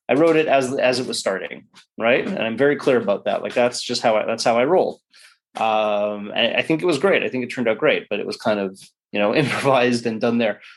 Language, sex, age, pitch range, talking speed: English, male, 30-49, 115-145 Hz, 260 wpm